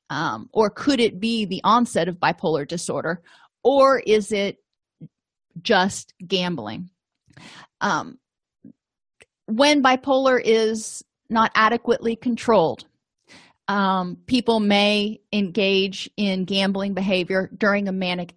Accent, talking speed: American, 105 wpm